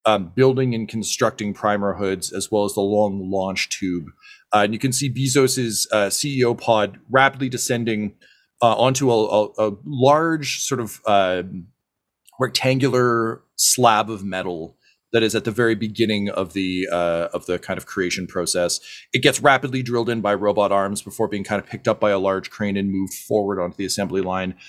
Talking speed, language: 175 wpm, English